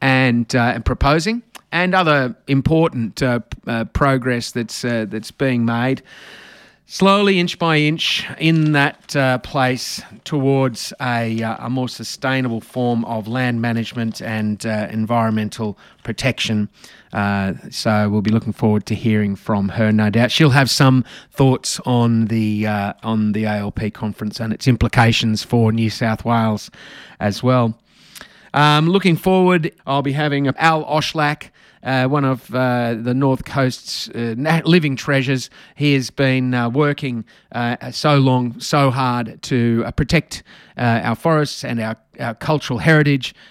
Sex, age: male, 30-49